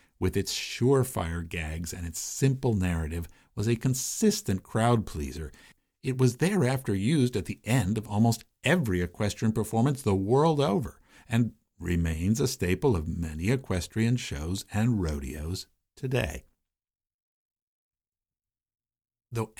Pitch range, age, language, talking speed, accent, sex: 90-120 Hz, 50-69, English, 120 wpm, American, male